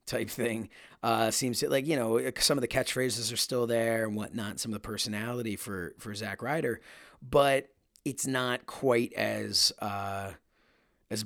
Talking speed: 170 wpm